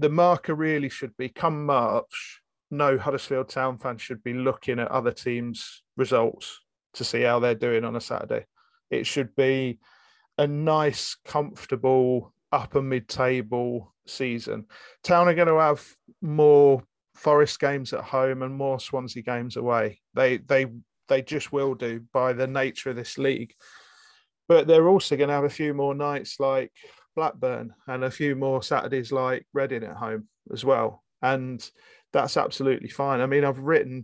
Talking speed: 160 wpm